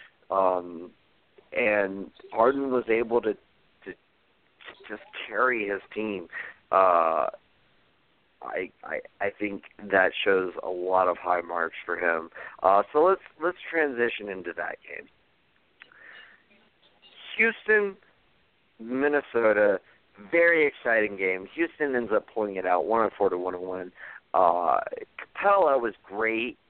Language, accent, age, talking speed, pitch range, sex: English, American, 50-69, 125 wpm, 95-125 Hz, male